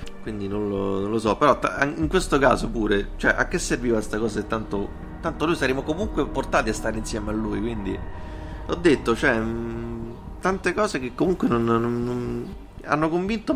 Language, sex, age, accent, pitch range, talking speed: Italian, male, 30-49, native, 105-130 Hz, 185 wpm